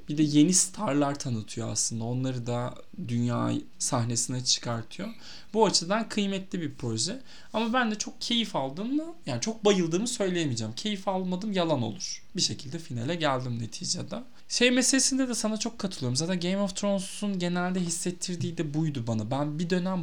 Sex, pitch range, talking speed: male, 140-200 Hz, 160 wpm